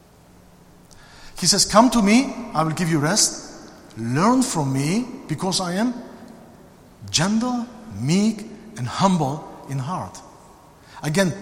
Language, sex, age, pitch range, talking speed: English, male, 50-69, 145-215 Hz, 120 wpm